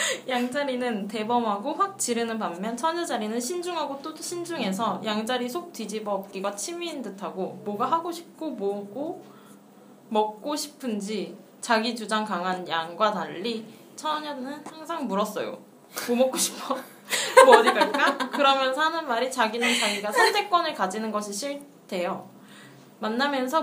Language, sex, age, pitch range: Korean, female, 20-39, 205-275 Hz